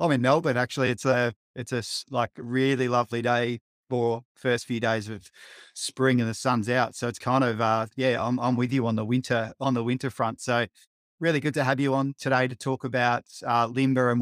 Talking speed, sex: 230 wpm, male